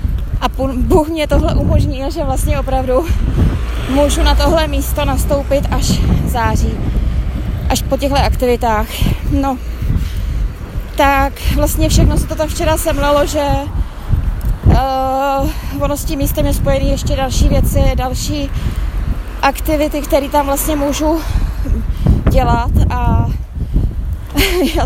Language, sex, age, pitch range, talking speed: Czech, female, 20-39, 230-285 Hz, 115 wpm